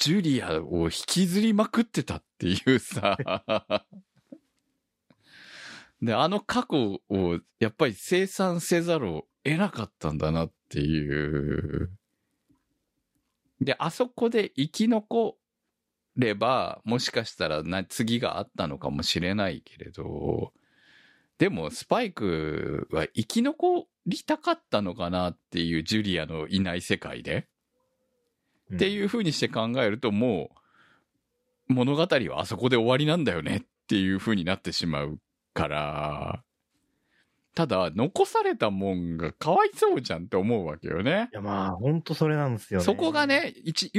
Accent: native